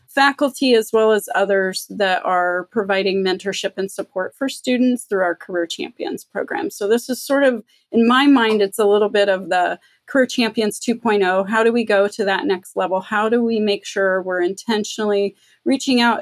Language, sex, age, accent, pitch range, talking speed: English, female, 30-49, American, 200-230 Hz, 190 wpm